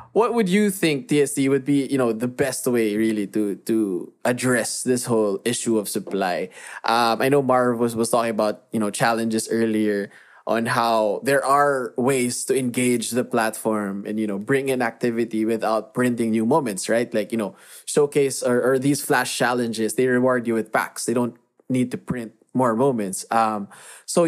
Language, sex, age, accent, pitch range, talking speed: Filipino, male, 20-39, native, 110-135 Hz, 190 wpm